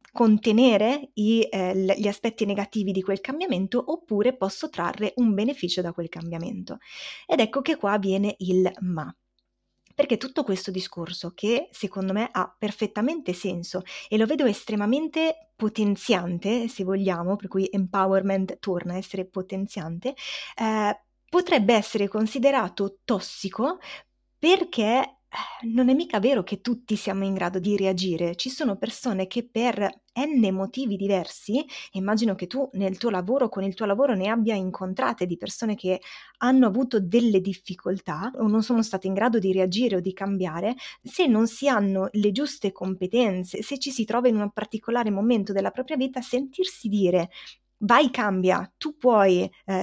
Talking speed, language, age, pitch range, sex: 155 wpm, Italian, 20-39, 195-250 Hz, female